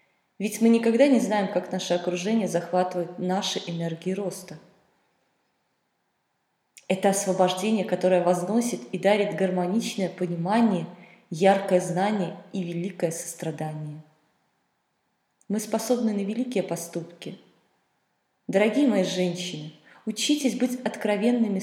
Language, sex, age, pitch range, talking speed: Russian, female, 20-39, 180-225 Hz, 100 wpm